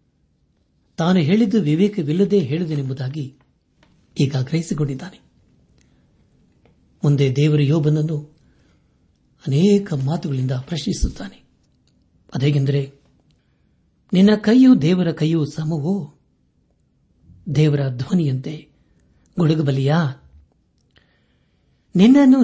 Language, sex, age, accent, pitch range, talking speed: Kannada, male, 60-79, native, 135-185 Hz, 55 wpm